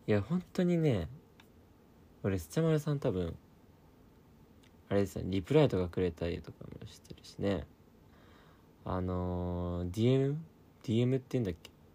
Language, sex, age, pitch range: Japanese, male, 20-39, 90-130 Hz